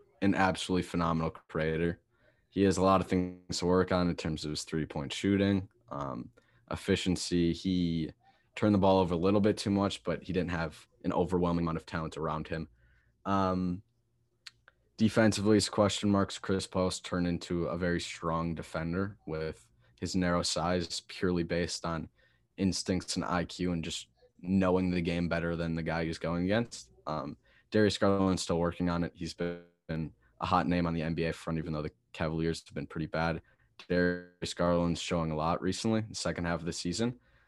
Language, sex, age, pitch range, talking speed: English, male, 20-39, 80-95 Hz, 185 wpm